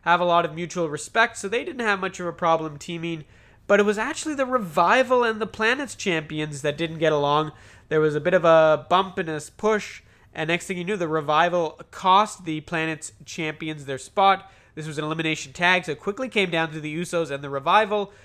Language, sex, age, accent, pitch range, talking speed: English, male, 20-39, American, 140-180 Hz, 225 wpm